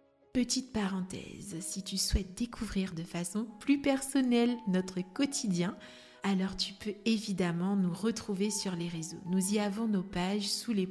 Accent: French